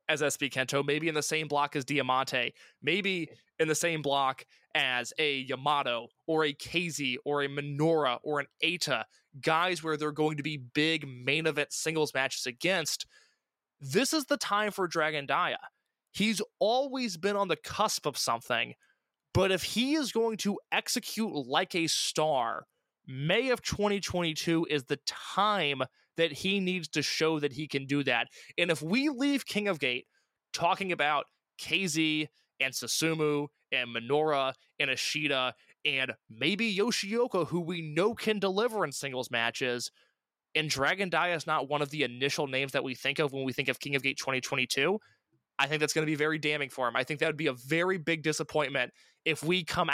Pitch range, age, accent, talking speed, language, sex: 140-175 Hz, 20-39, American, 180 wpm, English, male